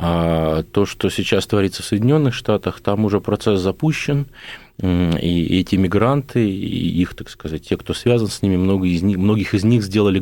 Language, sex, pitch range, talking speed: Russian, male, 90-120 Hz, 165 wpm